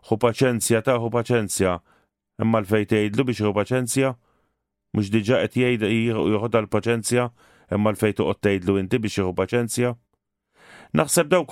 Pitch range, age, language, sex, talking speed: 110-125 Hz, 40-59, English, male, 125 wpm